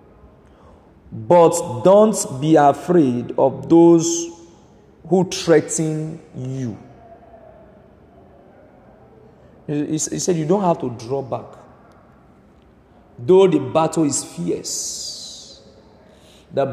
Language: English